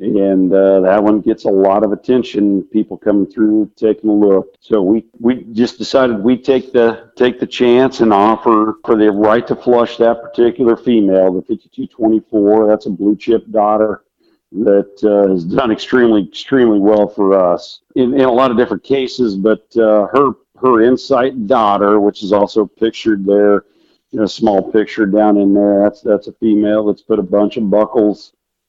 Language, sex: English, male